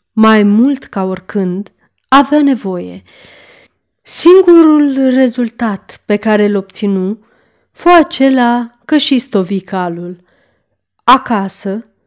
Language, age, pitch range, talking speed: Romanian, 30-49, 195-260 Hz, 90 wpm